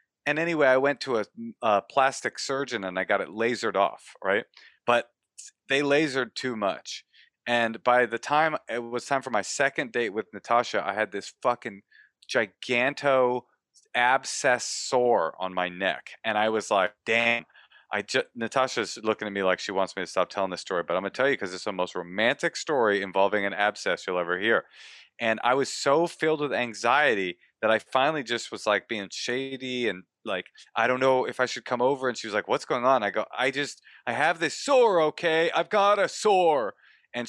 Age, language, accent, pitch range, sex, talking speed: 40-59, English, American, 105-135 Hz, male, 205 wpm